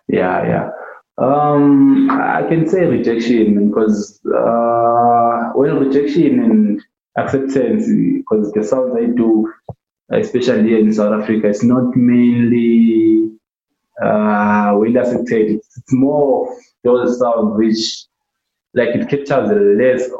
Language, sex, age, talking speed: English, male, 20-39, 115 wpm